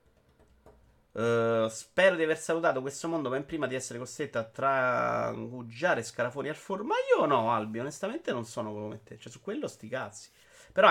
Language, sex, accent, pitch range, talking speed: Italian, male, native, 110-150 Hz, 180 wpm